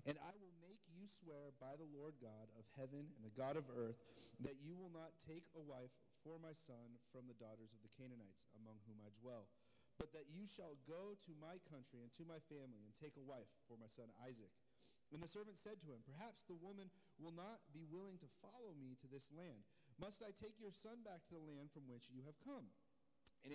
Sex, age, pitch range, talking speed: male, 40-59, 125-175 Hz, 230 wpm